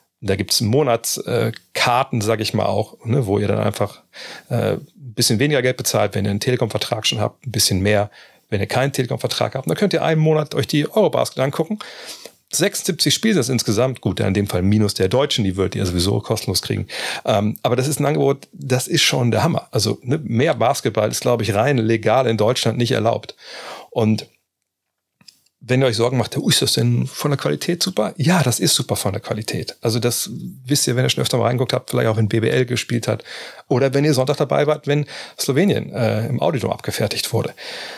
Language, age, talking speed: German, 40-59, 210 wpm